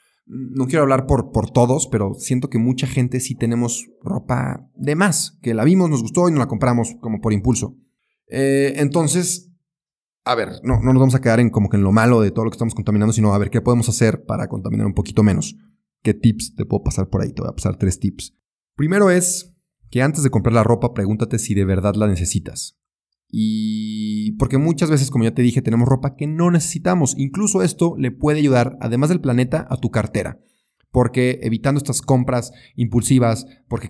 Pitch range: 110-140 Hz